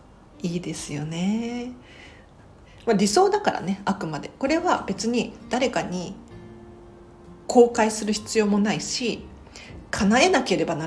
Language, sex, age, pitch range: Japanese, female, 40-59, 175-250 Hz